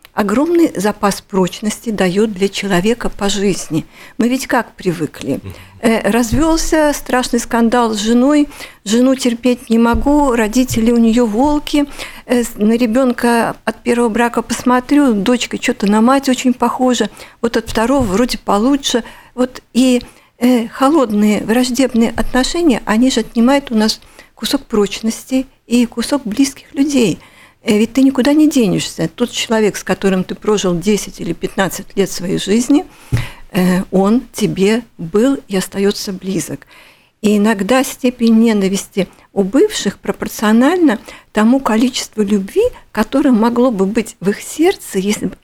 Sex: female